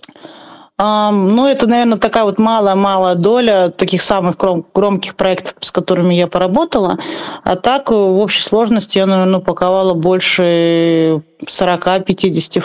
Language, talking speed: Russian, 130 wpm